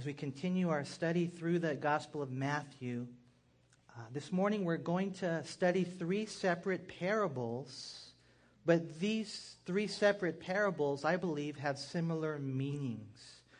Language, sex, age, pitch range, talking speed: English, male, 40-59, 125-180 Hz, 130 wpm